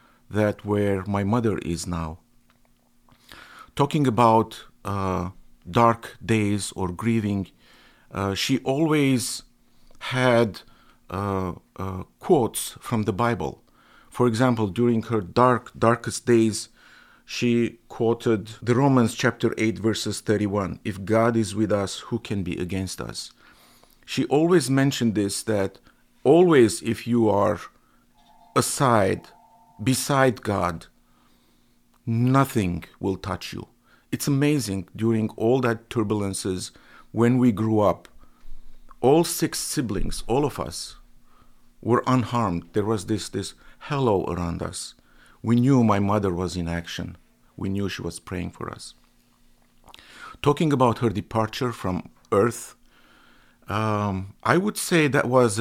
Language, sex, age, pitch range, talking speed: English, male, 50-69, 95-120 Hz, 125 wpm